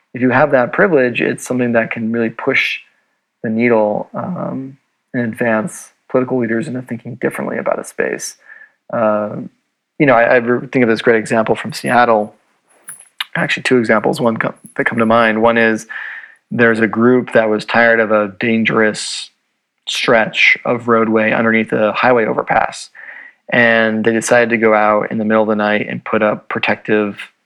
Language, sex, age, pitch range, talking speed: English, male, 30-49, 110-125 Hz, 170 wpm